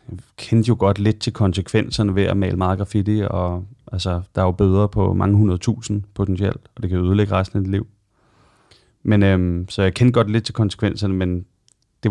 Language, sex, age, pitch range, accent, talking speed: Danish, male, 30-49, 90-110 Hz, native, 210 wpm